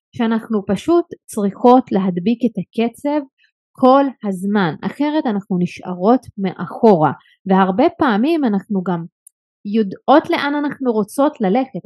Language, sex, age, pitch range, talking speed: Hebrew, female, 20-39, 190-260 Hz, 105 wpm